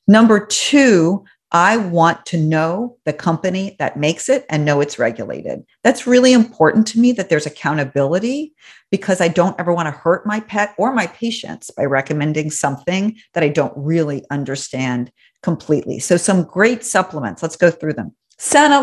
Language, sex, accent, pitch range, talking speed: English, female, American, 160-210 Hz, 170 wpm